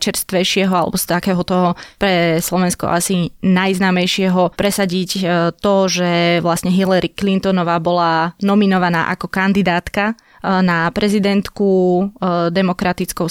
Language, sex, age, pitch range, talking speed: Slovak, female, 20-39, 175-205 Hz, 95 wpm